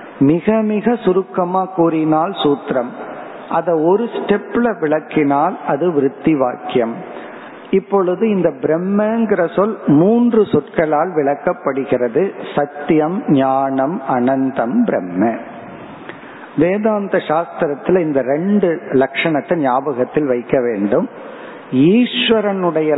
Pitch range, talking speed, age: 140-195 Hz, 80 wpm, 50-69